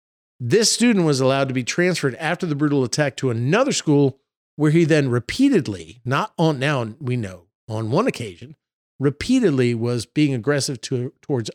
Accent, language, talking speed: American, English, 160 wpm